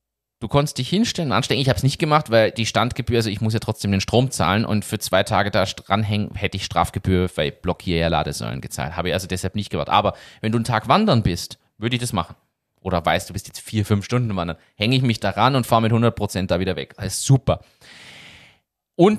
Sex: male